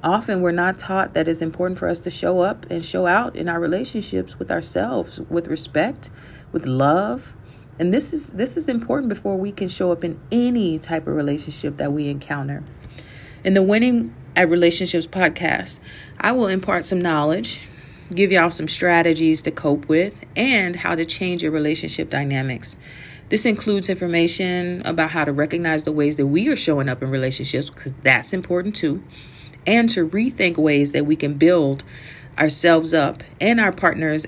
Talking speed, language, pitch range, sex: 175 wpm, English, 140-190 Hz, female